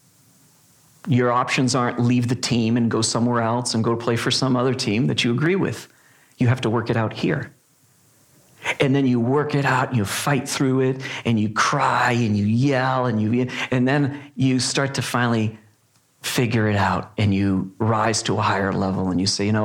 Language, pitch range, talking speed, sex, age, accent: English, 110-130 Hz, 210 wpm, male, 40-59, American